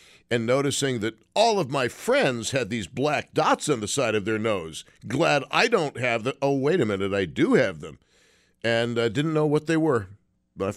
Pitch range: 120-155 Hz